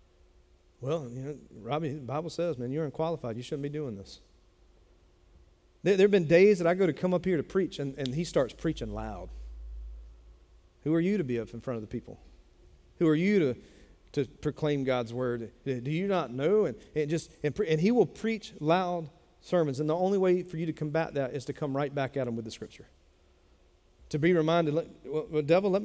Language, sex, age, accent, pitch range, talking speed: English, male, 40-59, American, 115-190 Hz, 220 wpm